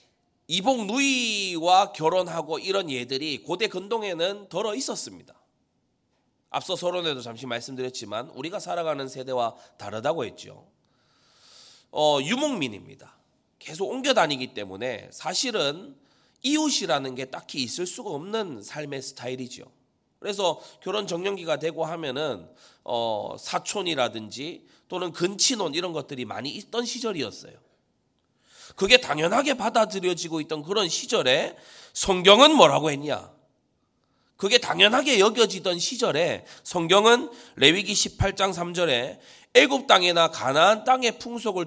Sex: male